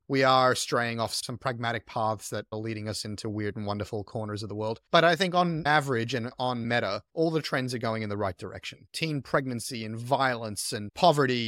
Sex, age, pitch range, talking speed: male, 30-49, 115-155 Hz, 220 wpm